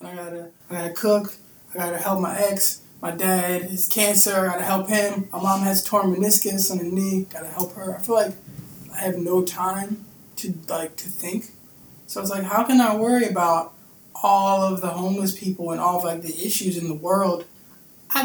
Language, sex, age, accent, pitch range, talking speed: English, male, 20-39, American, 175-205 Hz, 210 wpm